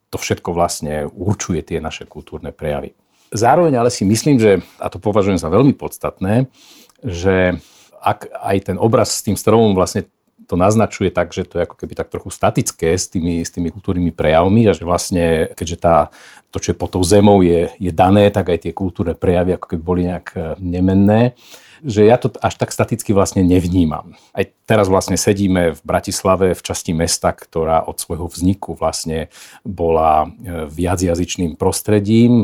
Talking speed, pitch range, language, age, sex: 170 wpm, 85-100 Hz, Slovak, 50-69, male